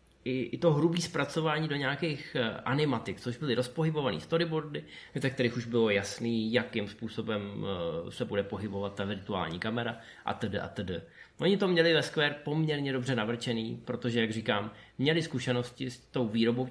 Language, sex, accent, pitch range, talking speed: Czech, male, native, 115-150 Hz, 155 wpm